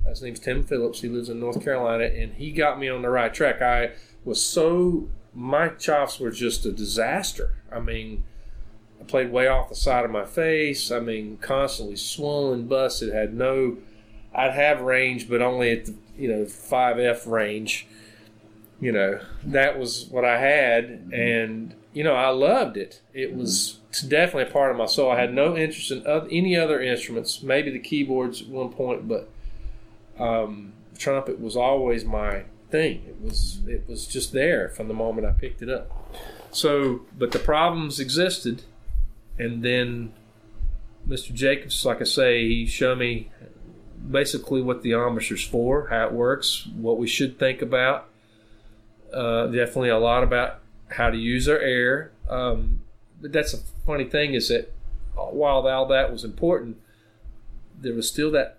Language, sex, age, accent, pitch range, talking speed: English, male, 30-49, American, 110-130 Hz, 170 wpm